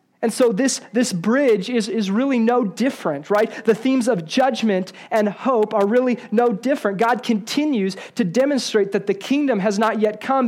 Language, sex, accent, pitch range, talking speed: English, male, American, 185-230 Hz, 185 wpm